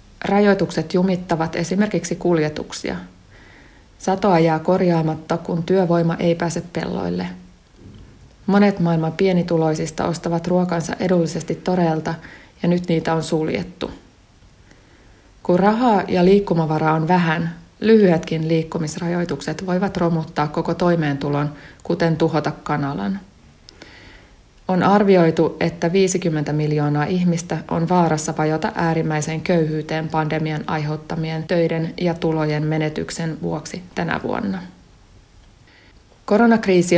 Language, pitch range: Finnish, 155-175 Hz